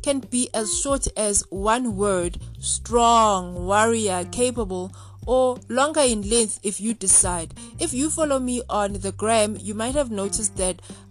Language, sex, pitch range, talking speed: English, female, 180-245 Hz, 155 wpm